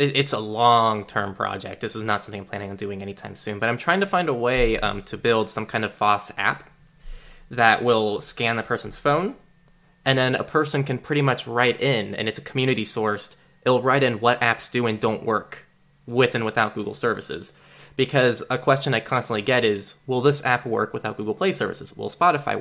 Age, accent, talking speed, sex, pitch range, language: 20-39, American, 210 wpm, male, 110-150 Hz, English